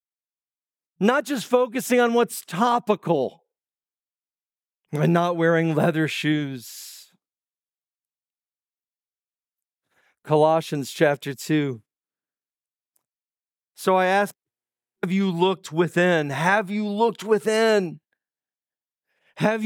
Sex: male